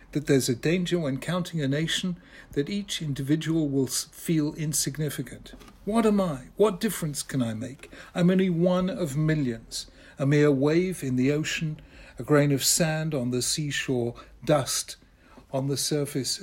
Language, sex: English, male